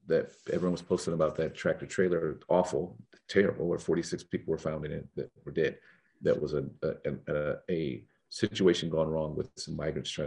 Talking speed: 195 wpm